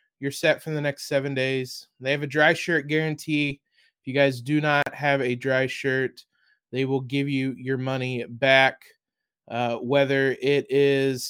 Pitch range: 135-165 Hz